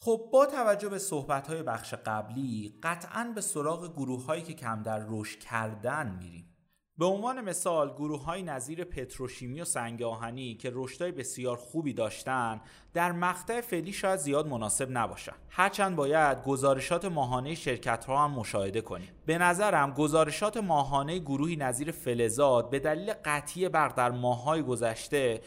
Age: 30-49